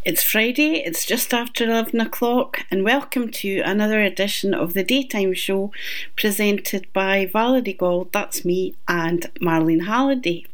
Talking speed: 140 wpm